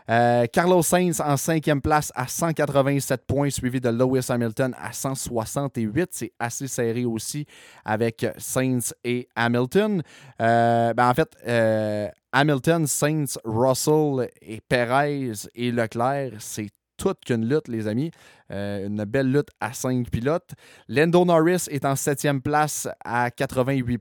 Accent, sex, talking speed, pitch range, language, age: Canadian, male, 140 wpm, 120-150 Hz, French, 20-39